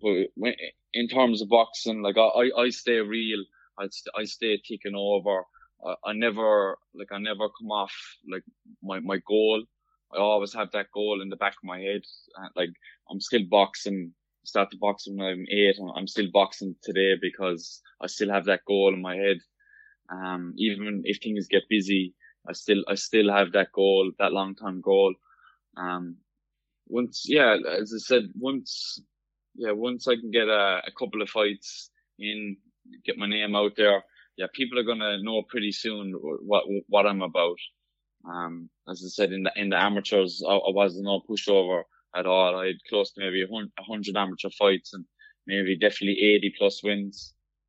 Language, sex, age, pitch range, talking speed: English, male, 10-29, 95-105 Hz, 180 wpm